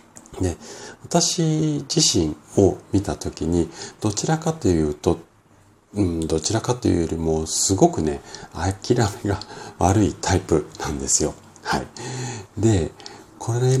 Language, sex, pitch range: Japanese, male, 80-100 Hz